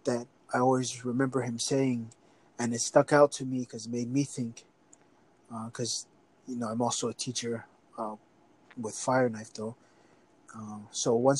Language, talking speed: English, 175 wpm